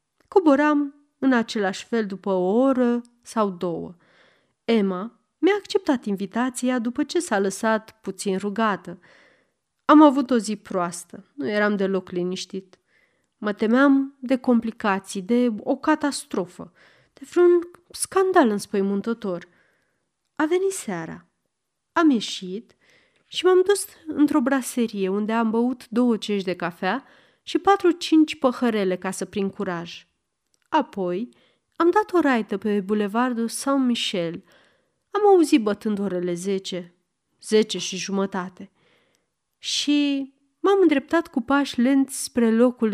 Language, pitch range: Romanian, 195-280 Hz